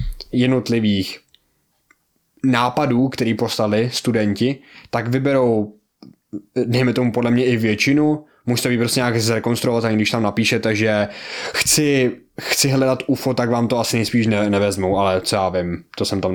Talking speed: 145 wpm